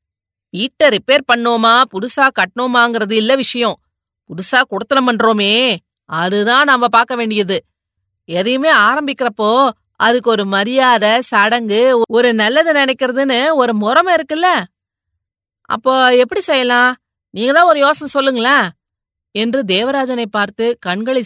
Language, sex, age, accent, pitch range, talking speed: Tamil, female, 30-49, native, 195-255 Hz, 105 wpm